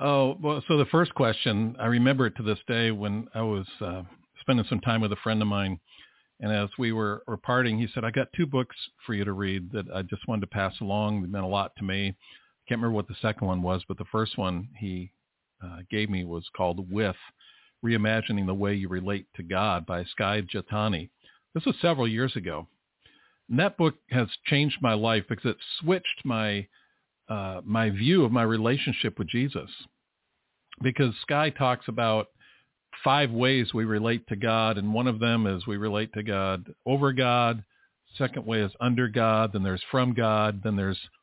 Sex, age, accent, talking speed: male, 50-69, American, 200 wpm